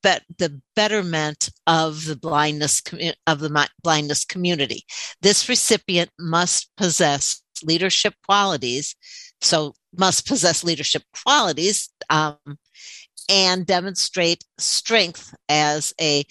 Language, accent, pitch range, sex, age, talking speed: English, American, 150-180 Hz, female, 60-79, 95 wpm